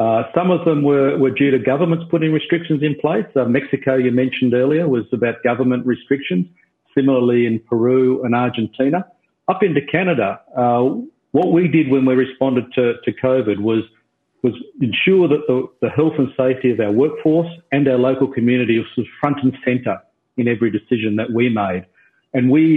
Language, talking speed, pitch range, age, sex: English, 180 wpm, 110-135 Hz, 50-69, male